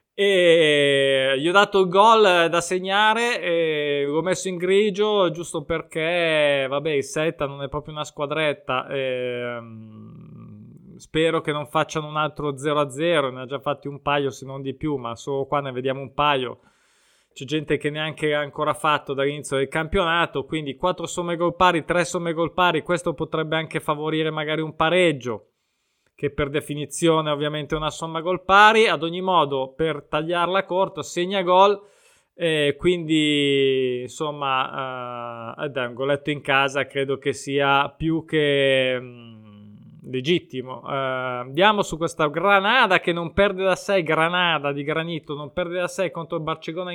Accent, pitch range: native, 140-175 Hz